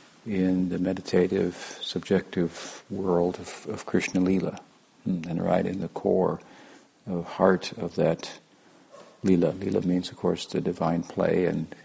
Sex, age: male, 50-69